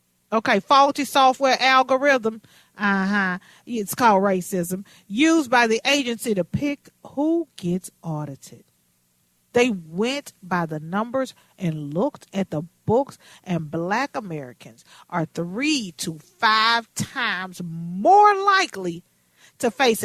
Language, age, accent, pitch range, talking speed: English, 40-59, American, 165-260 Hz, 120 wpm